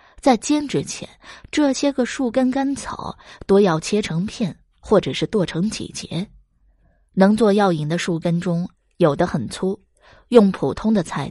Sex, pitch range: female, 165-215 Hz